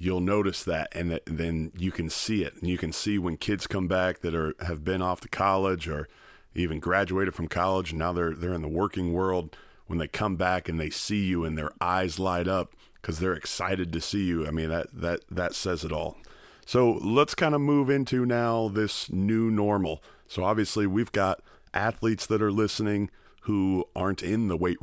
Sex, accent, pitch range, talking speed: male, American, 90-100 Hz, 215 wpm